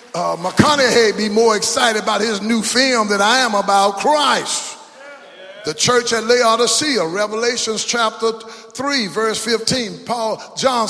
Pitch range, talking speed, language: 205-275 Hz, 140 wpm, English